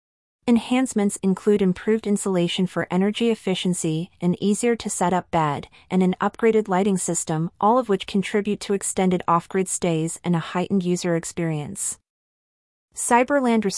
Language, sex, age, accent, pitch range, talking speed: English, female, 30-49, American, 170-205 Hz, 125 wpm